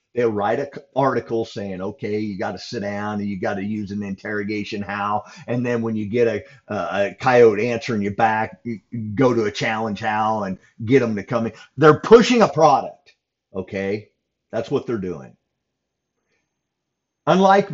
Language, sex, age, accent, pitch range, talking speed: English, male, 50-69, American, 115-165 Hz, 175 wpm